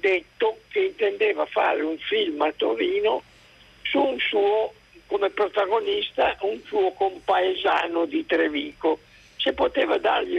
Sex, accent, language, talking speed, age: male, native, Italian, 120 wpm, 60-79